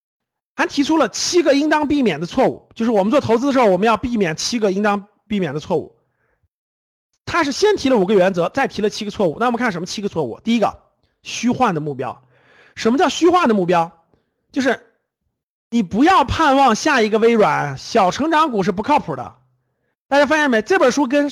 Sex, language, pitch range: male, Chinese, 185-290 Hz